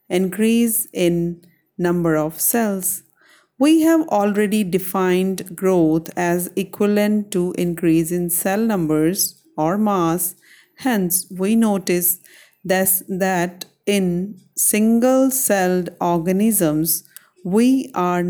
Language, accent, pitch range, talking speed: English, Indian, 170-210 Hz, 95 wpm